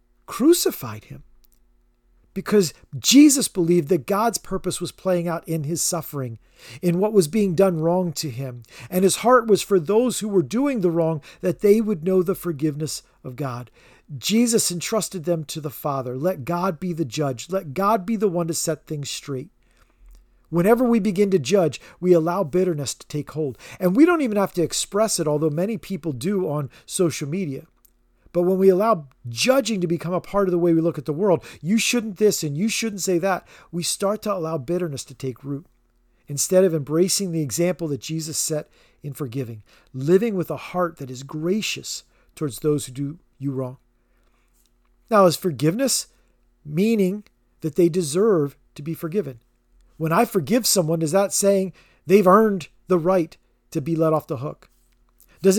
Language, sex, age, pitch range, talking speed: English, male, 40-59, 145-195 Hz, 185 wpm